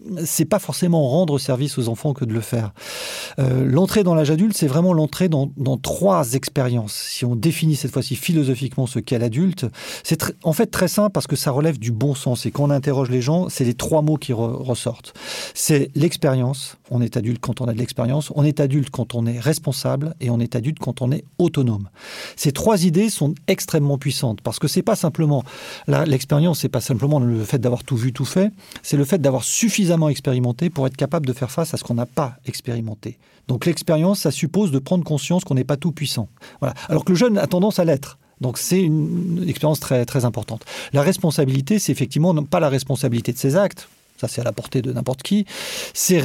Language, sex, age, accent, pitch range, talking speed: French, male, 40-59, French, 130-170 Hz, 220 wpm